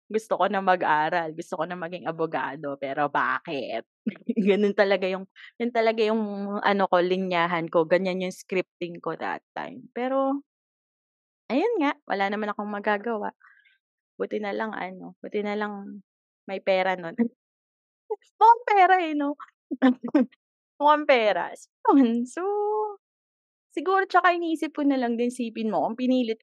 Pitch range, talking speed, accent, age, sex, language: 185-275 Hz, 145 wpm, native, 20-39, female, Filipino